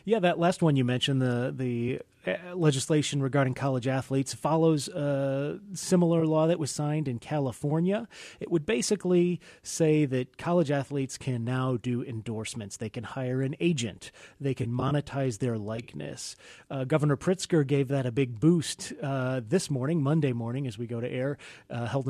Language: English